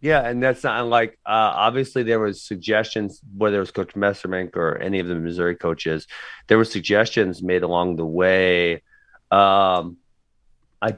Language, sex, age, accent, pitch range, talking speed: English, male, 30-49, American, 100-120 Hz, 165 wpm